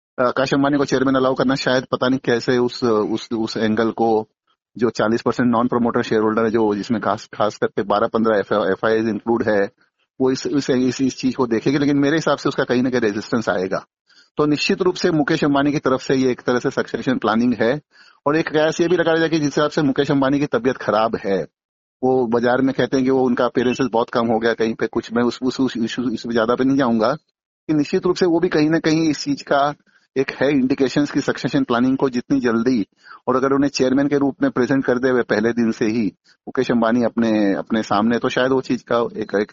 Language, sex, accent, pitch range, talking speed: Hindi, male, native, 115-140 Hz, 205 wpm